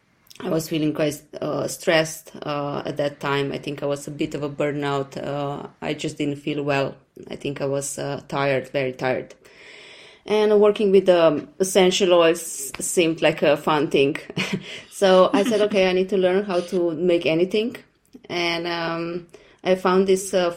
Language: English